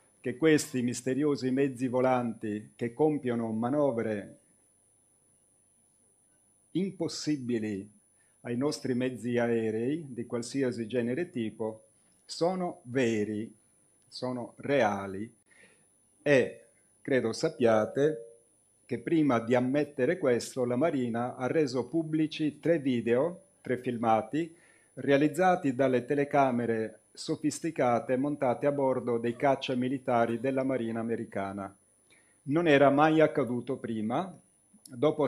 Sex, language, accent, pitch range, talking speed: male, Italian, native, 115-145 Hz, 100 wpm